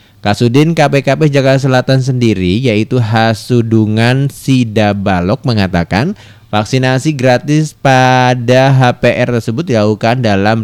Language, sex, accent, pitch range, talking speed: Indonesian, male, native, 100-125 Hz, 90 wpm